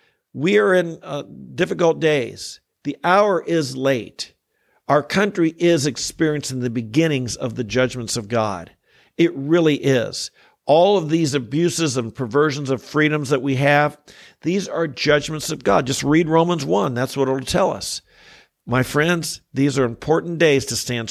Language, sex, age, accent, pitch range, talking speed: English, male, 50-69, American, 130-165 Hz, 160 wpm